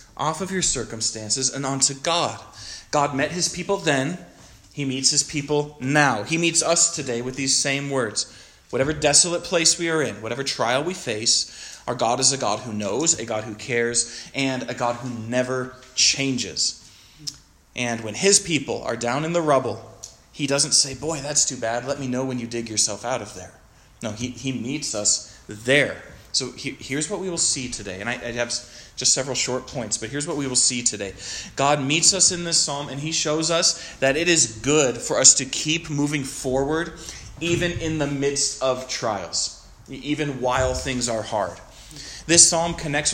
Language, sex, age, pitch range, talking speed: English, male, 20-39, 120-150 Hz, 195 wpm